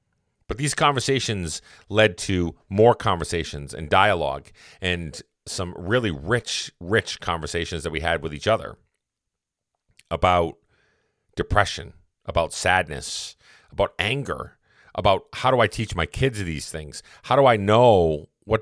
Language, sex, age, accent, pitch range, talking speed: English, male, 40-59, American, 85-110 Hz, 130 wpm